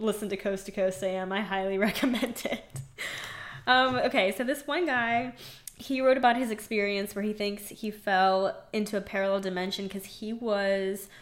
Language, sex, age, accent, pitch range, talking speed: English, female, 20-39, American, 190-230 Hz, 175 wpm